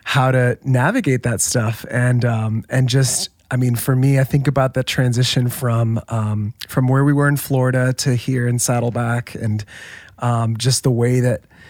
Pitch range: 120-135 Hz